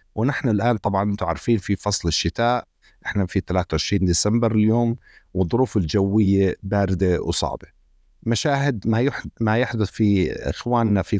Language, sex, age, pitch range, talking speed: Arabic, male, 50-69, 95-120 Hz, 125 wpm